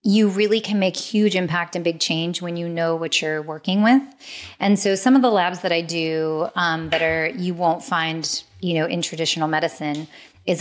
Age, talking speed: 30-49, 210 wpm